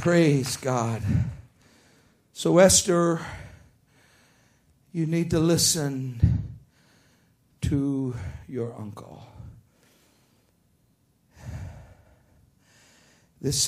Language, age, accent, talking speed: English, 60-79, American, 55 wpm